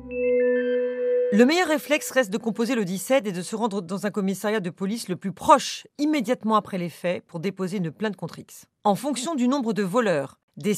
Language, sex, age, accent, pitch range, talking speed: French, female, 40-59, French, 175-245 Hz, 205 wpm